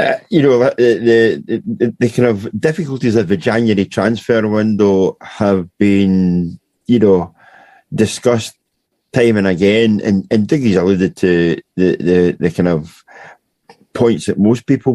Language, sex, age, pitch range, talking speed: English, male, 50-69, 100-130 Hz, 135 wpm